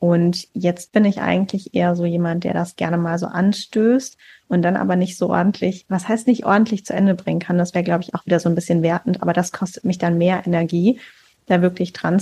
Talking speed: 235 wpm